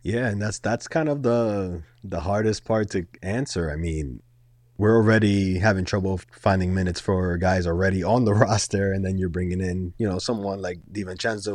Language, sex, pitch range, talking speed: English, male, 95-120 Hz, 185 wpm